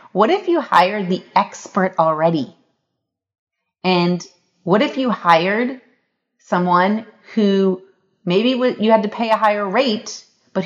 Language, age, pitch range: English, 30-49, 180-235 Hz